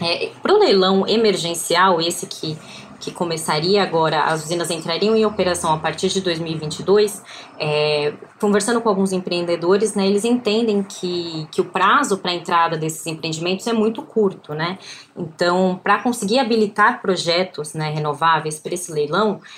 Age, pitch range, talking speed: 20-39, 175-215 Hz, 150 wpm